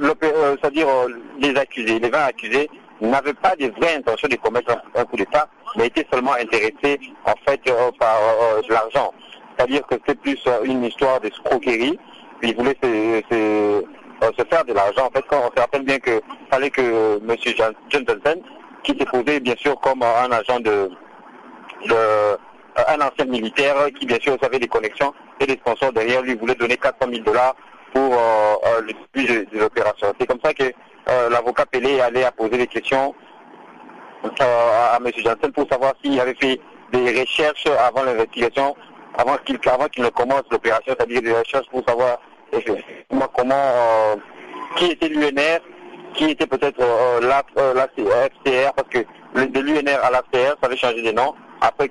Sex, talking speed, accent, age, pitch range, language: male, 195 wpm, French, 50-69, 115-140 Hz, French